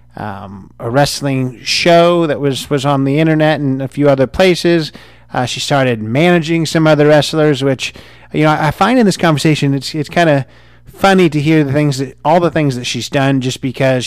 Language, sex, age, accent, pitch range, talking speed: English, male, 30-49, American, 130-155 Hz, 210 wpm